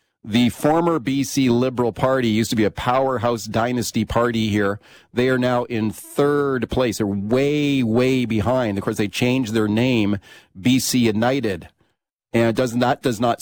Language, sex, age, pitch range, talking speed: English, male, 40-59, 115-145 Hz, 160 wpm